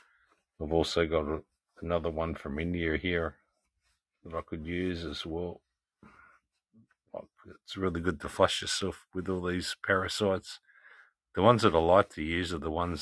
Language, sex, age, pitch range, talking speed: English, male, 50-69, 80-90 Hz, 155 wpm